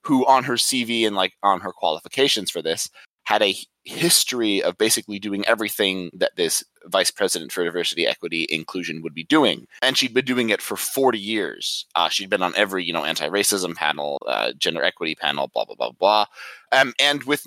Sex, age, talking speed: male, 20-39, 200 wpm